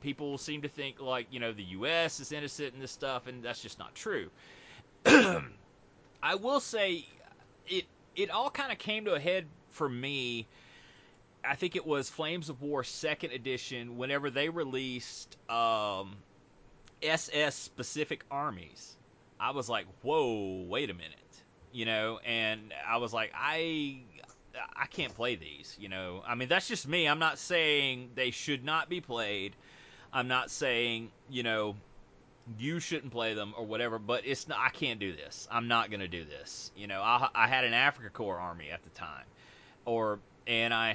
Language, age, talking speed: English, 30-49, 175 wpm